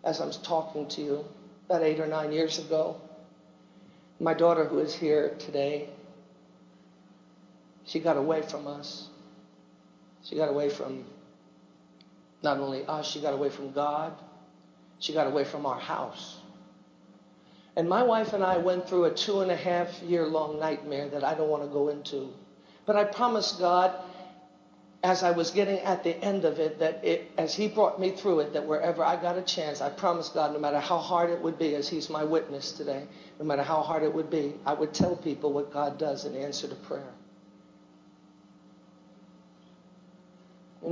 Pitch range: 145-170 Hz